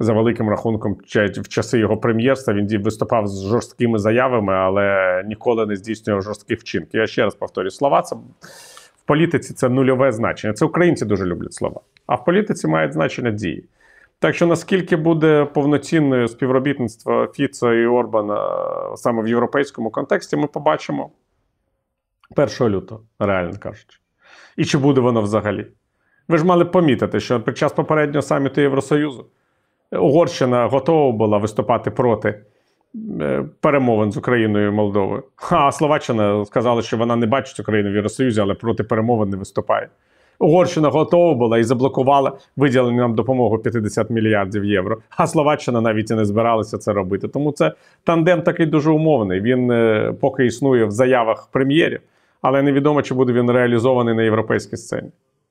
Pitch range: 110-140 Hz